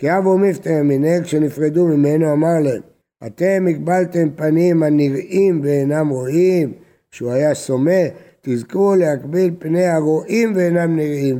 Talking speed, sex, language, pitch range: 120 wpm, male, Hebrew, 145-175 Hz